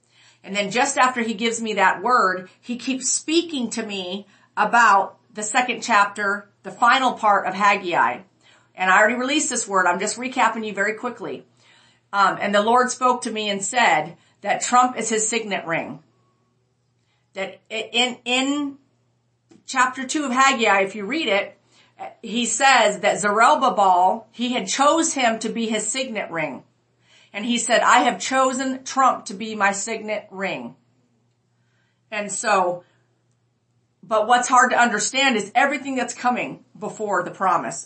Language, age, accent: English, 50-69, American